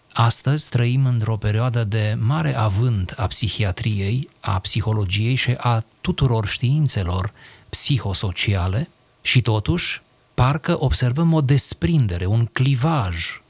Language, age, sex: Romanian, 30-49, male